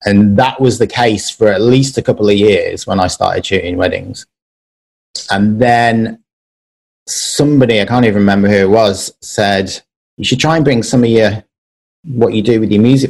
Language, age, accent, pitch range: English, 30-49, British, 95-115 Hz